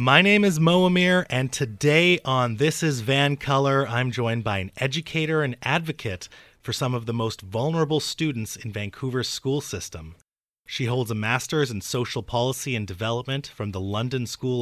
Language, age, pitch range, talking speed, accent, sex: English, 30-49, 120-160 Hz, 170 wpm, American, male